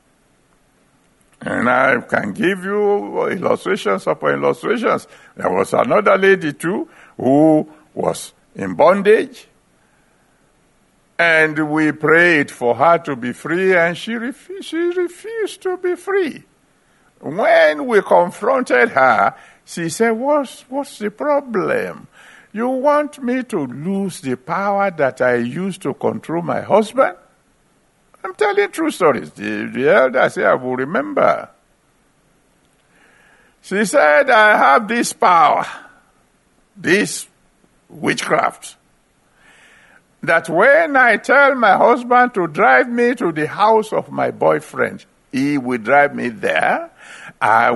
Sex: male